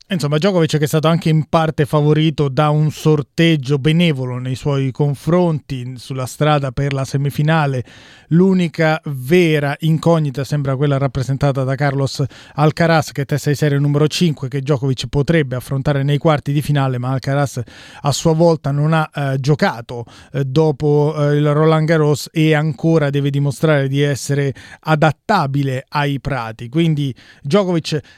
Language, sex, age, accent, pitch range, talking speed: Italian, male, 30-49, native, 140-165 Hz, 150 wpm